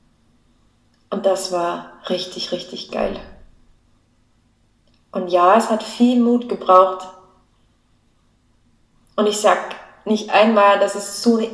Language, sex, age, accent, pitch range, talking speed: German, female, 20-39, German, 190-240 Hz, 115 wpm